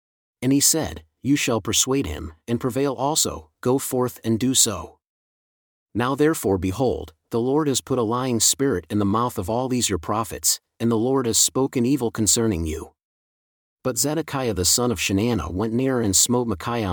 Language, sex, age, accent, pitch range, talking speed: English, male, 40-59, American, 95-130 Hz, 185 wpm